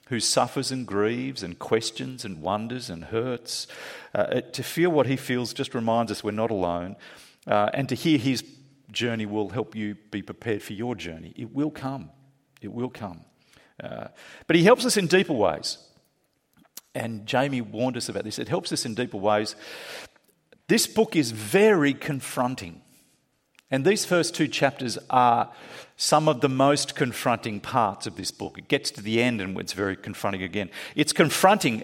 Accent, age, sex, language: Australian, 50-69, male, English